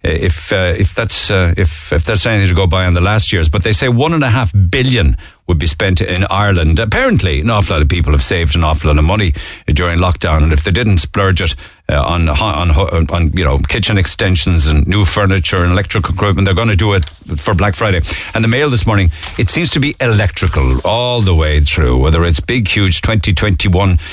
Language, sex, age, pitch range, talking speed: English, male, 60-79, 85-105 Hz, 225 wpm